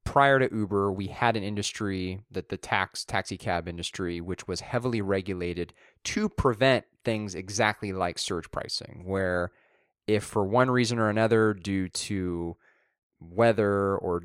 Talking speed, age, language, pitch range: 145 wpm, 30-49, English, 95-115 Hz